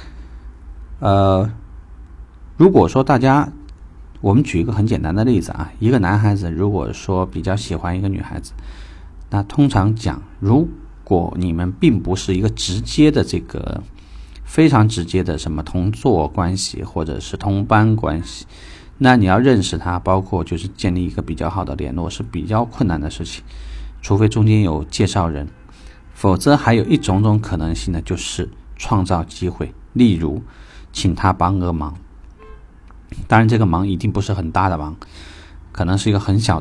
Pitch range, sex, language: 80-100 Hz, male, Chinese